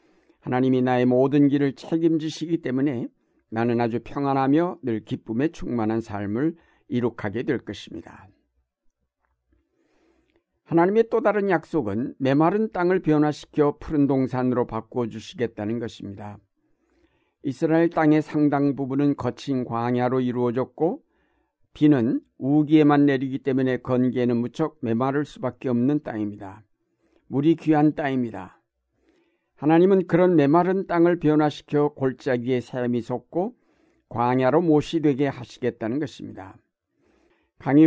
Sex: male